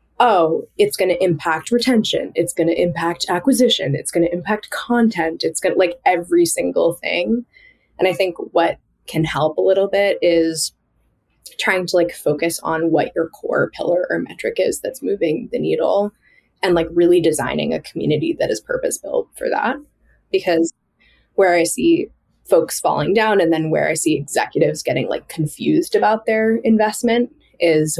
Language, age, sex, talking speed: English, 20-39, female, 165 wpm